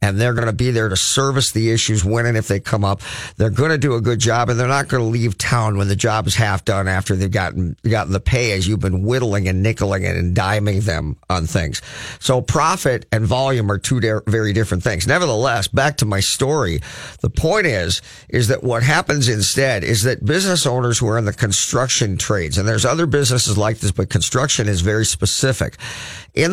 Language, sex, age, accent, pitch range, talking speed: English, male, 50-69, American, 105-135 Hz, 220 wpm